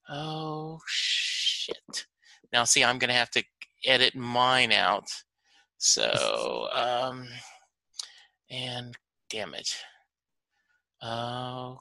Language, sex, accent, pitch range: English, male, American, 115-140 Hz